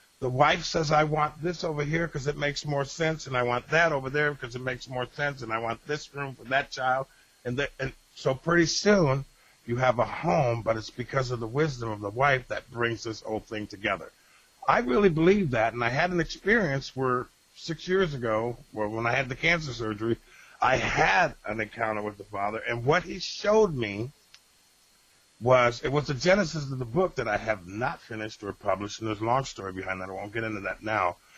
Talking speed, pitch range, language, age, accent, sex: 220 wpm, 110-155 Hz, English, 50-69, American, male